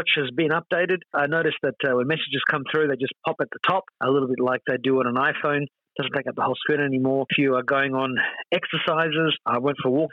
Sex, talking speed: male, 260 wpm